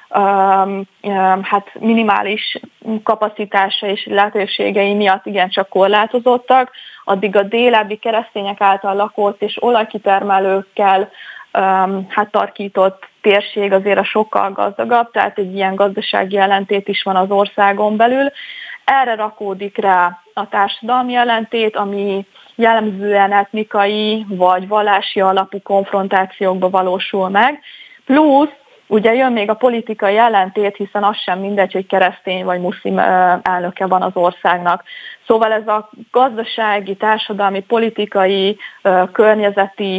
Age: 20-39